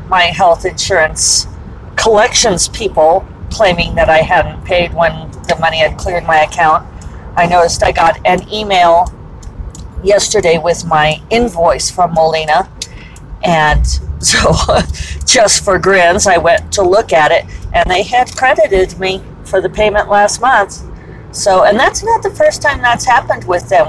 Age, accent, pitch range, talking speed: 40-59, American, 170-220 Hz, 155 wpm